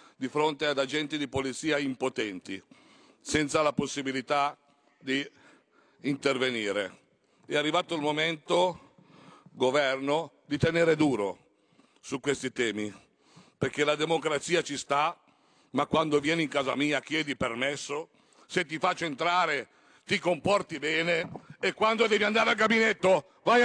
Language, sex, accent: Italian, male, native